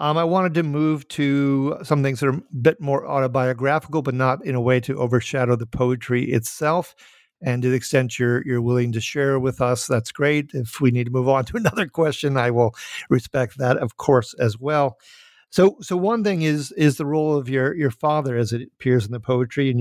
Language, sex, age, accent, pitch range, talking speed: English, male, 50-69, American, 125-145 Hz, 225 wpm